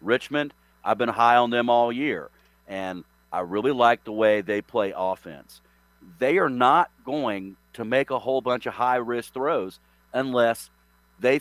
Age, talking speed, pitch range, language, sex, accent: 50-69, 165 wpm, 95-130 Hz, English, male, American